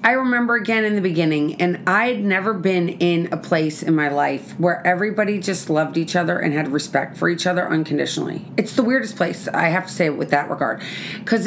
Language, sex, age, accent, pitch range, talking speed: English, female, 30-49, American, 165-205 Hz, 220 wpm